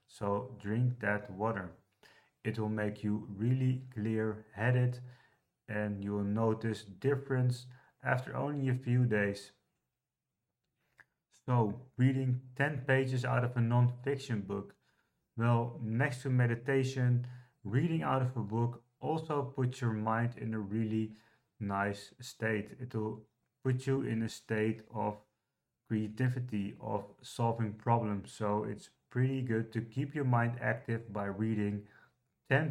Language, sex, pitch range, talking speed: English, male, 105-125 Hz, 130 wpm